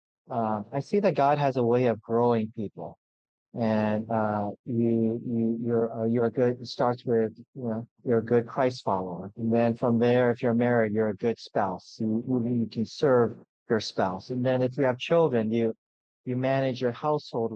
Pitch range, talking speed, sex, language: 115-135 Hz, 200 wpm, male, English